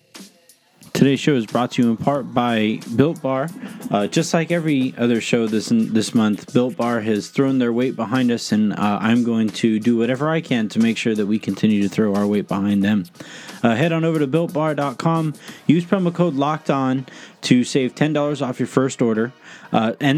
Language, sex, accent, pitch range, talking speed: English, male, American, 115-165 Hz, 210 wpm